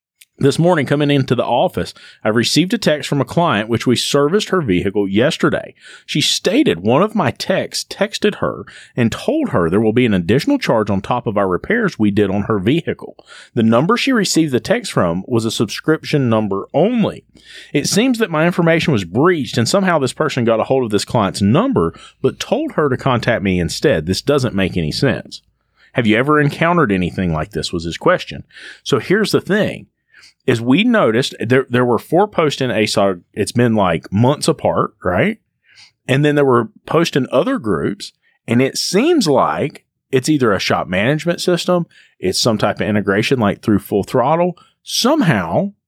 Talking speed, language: 190 wpm, English